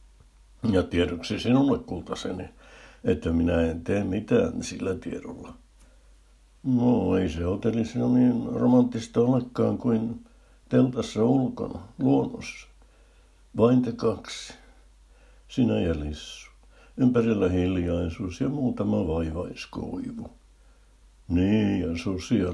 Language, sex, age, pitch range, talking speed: Finnish, male, 60-79, 90-125 Hz, 100 wpm